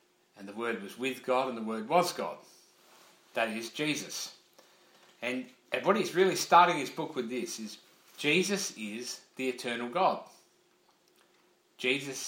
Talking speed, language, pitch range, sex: 145 wpm, English, 120-150 Hz, male